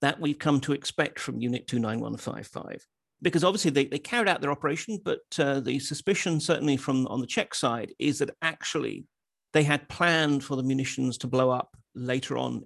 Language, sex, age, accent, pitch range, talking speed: Swedish, male, 40-59, British, 130-175 Hz, 190 wpm